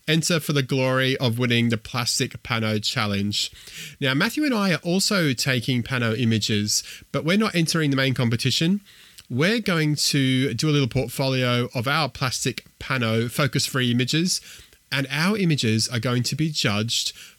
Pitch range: 120-150 Hz